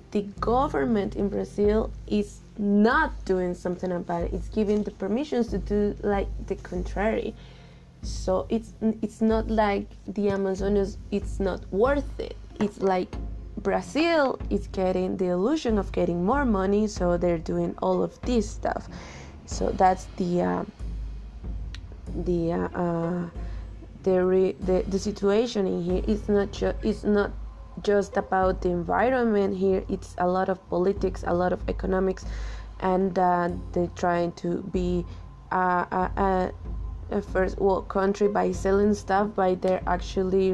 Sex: female